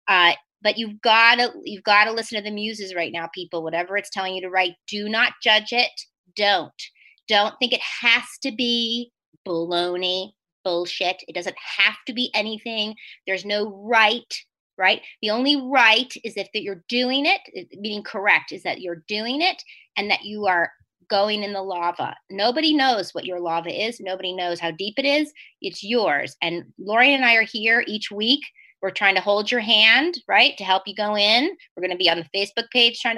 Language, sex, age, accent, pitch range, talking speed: English, female, 30-49, American, 180-230 Hz, 200 wpm